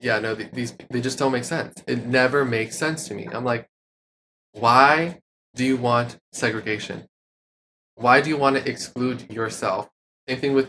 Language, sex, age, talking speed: English, male, 20-39, 170 wpm